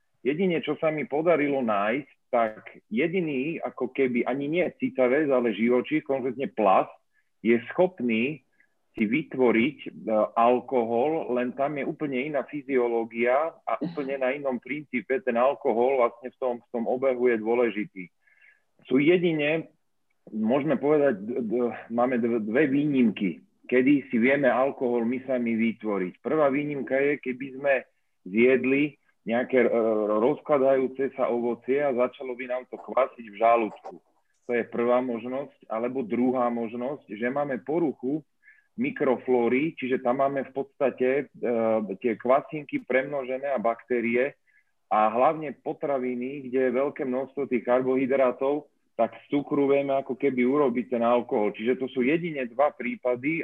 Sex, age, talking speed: male, 40-59, 140 wpm